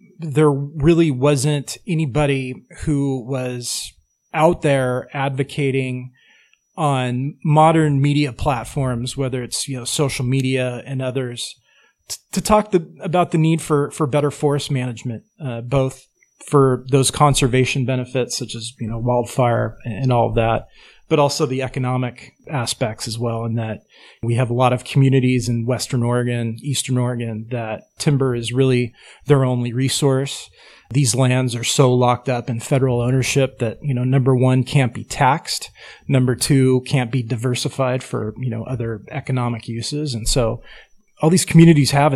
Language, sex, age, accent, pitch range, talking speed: English, male, 30-49, American, 125-145 Hz, 150 wpm